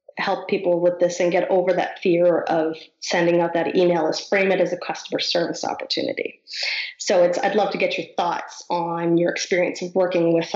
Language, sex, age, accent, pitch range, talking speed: English, female, 30-49, American, 170-195 Hz, 205 wpm